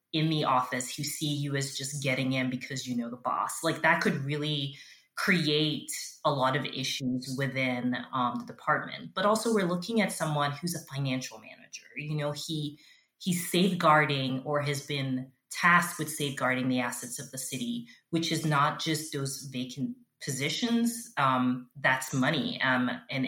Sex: female